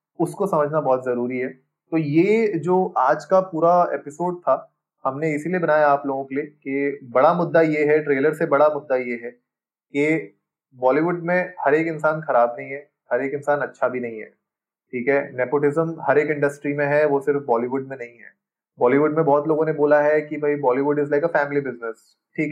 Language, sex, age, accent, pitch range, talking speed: Hindi, male, 20-39, native, 130-155 Hz, 205 wpm